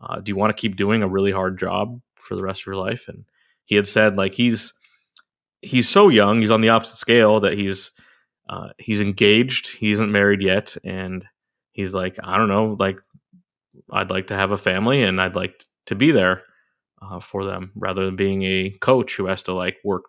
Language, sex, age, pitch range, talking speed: English, male, 20-39, 95-120 Hz, 215 wpm